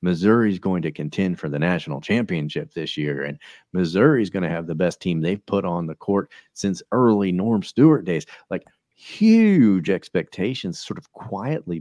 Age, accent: 40-59, American